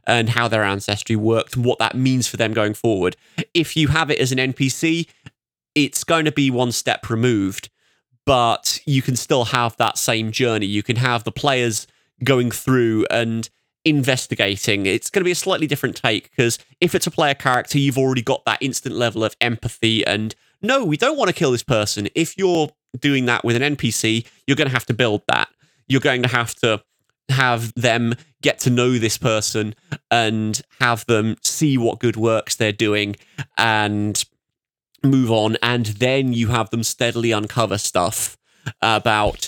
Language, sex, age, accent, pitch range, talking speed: English, male, 20-39, British, 110-130 Hz, 185 wpm